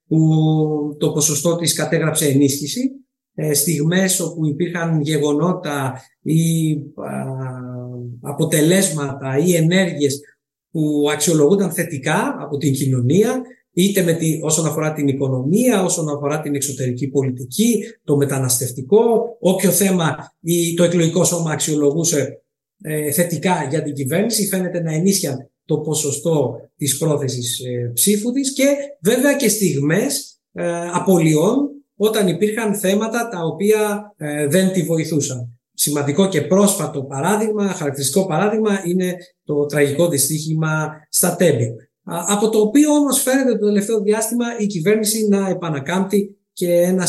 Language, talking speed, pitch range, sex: Greek, 120 wpm, 145-195 Hz, male